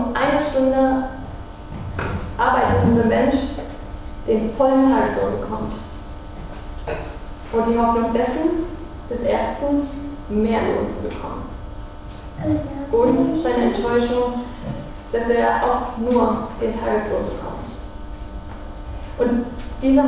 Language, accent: German, German